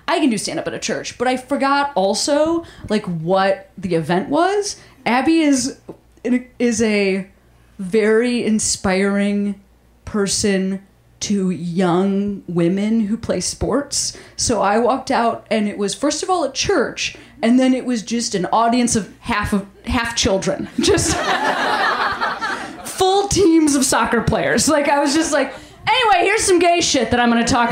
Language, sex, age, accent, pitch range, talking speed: English, female, 30-49, American, 205-295 Hz, 160 wpm